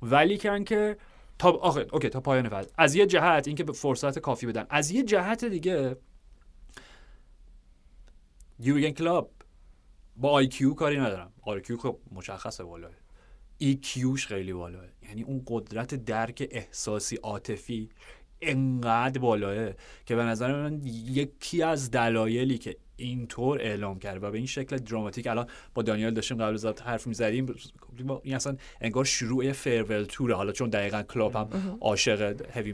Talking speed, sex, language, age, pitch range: 145 wpm, male, Persian, 30-49, 105-135 Hz